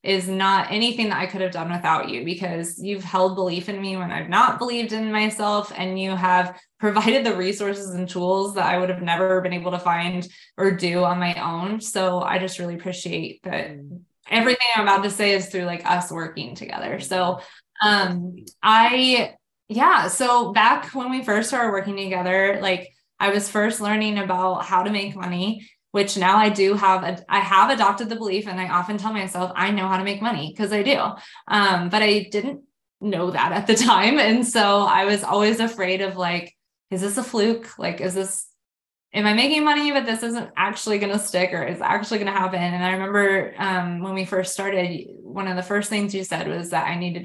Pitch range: 180-210 Hz